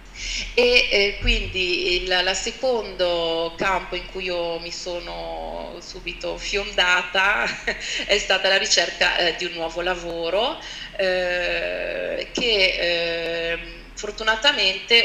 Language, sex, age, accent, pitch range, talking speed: Italian, female, 30-49, native, 170-195 Hz, 110 wpm